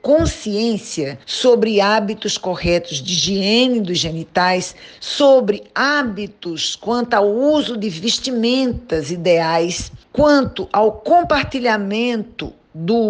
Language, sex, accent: Portuguese, female, Brazilian